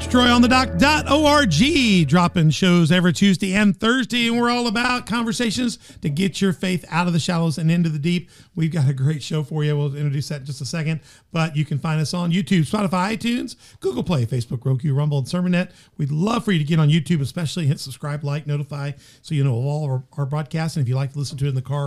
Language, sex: English, male